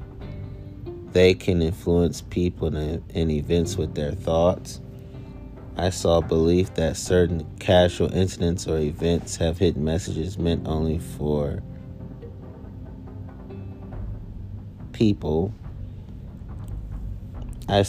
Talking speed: 85 wpm